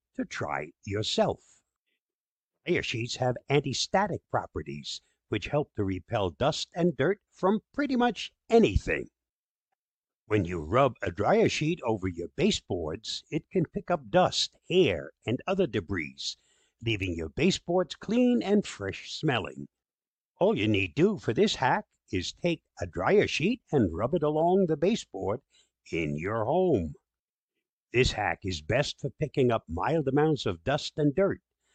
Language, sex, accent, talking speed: English, male, American, 145 wpm